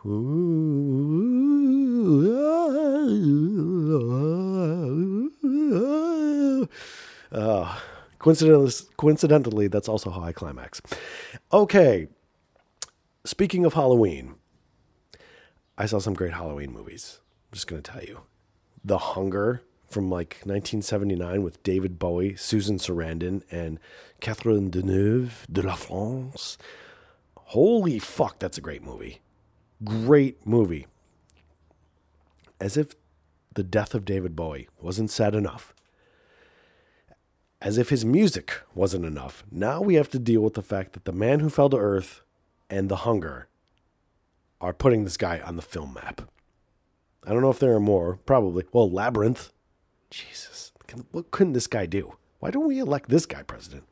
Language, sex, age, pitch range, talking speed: English, male, 30-49, 90-150 Hz, 125 wpm